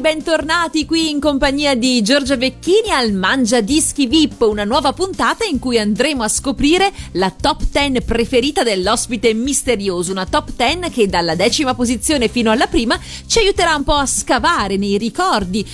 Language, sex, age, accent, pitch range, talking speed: Italian, female, 40-59, native, 220-305 Hz, 165 wpm